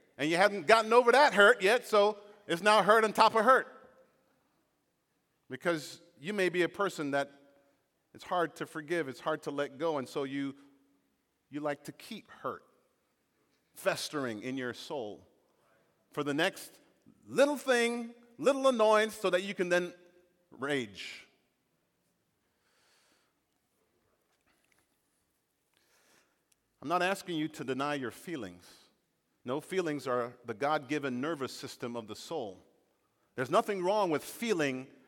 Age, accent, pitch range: 50-69, American, 140-205 Hz